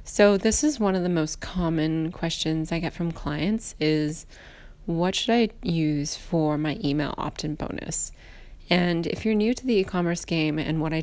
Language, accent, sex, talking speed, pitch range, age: English, American, female, 185 wpm, 155-185 Hz, 20-39